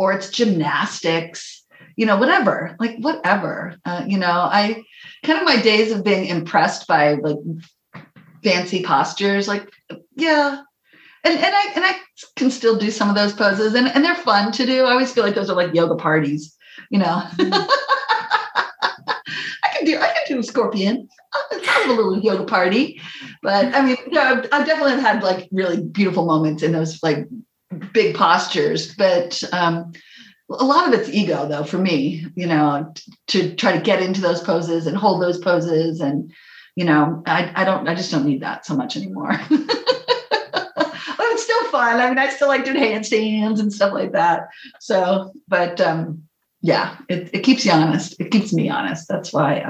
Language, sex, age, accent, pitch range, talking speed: English, female, 40-59, American, 175-265 Hz, 185 wpm